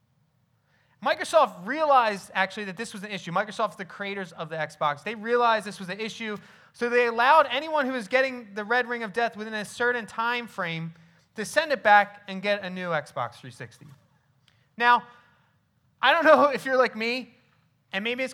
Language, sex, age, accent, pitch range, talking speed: English, male, 30-49, American, 145-225 Hz, 190 wpm